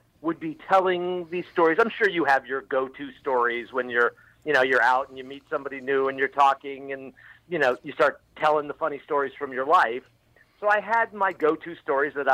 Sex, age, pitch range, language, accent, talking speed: male, 50-69, 130-170 Hz, English, American, 220 wpm